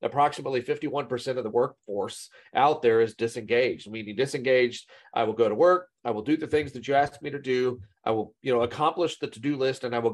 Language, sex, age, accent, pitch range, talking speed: English, male, 40-59, American, 120-150 Hz, 225 wpm